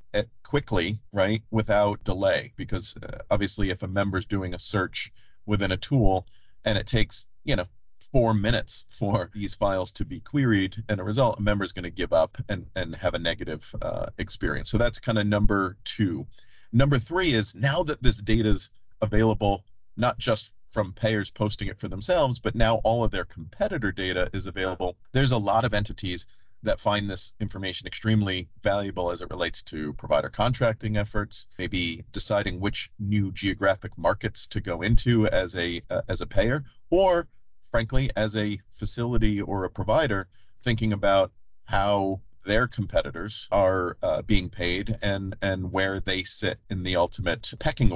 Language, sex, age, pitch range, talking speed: English, male, 40-59, 95-110 Hz, 175 wpm